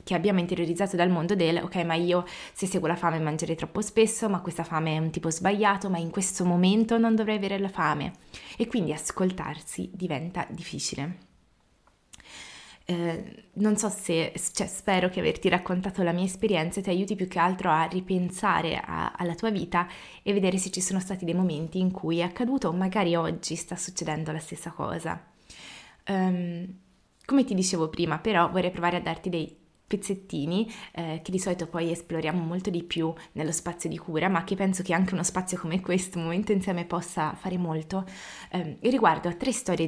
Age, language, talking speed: 20-39, Italian, 185 wpm